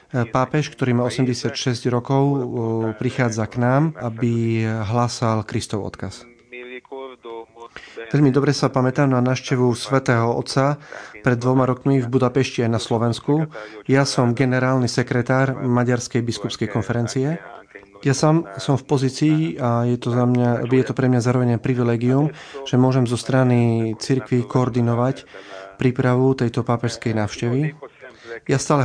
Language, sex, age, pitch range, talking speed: Slovak, male, 30-49, 120-135 Hz, 125 wpm